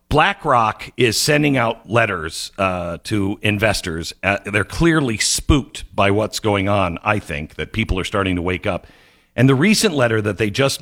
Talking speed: 175 wpm